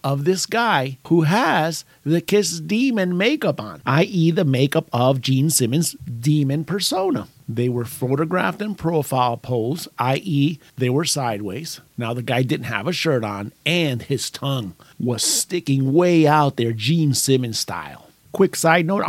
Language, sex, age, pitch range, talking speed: English, male, 50-69, 125-165 Hz, 155 wpm